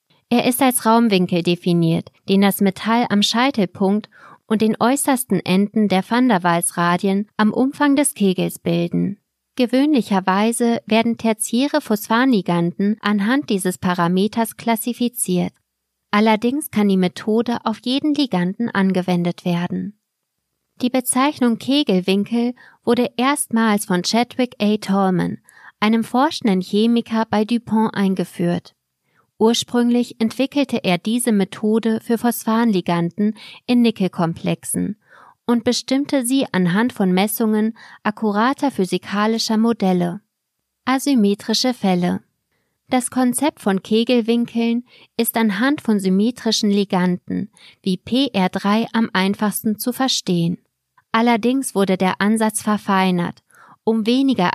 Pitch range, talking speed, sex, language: 190-240 Hz, 105 wpm, female, German